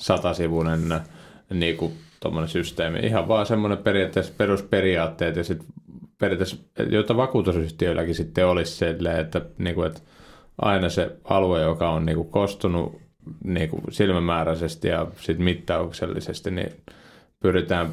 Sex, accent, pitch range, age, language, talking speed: male, native, 85-105 Hz, 30-49, Finnish, 110 wpm